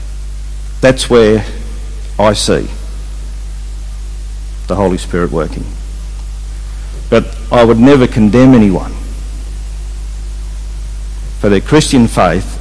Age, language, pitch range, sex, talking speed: 50-69, English, 75-120 Hz, male, 85 wpm